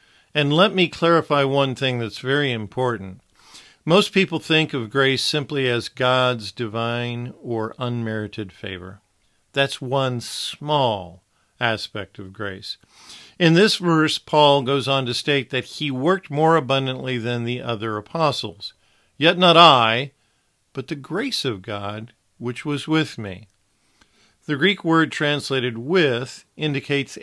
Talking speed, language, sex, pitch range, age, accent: 135 wpm, English, male, 115-150 Hz, 50-69, American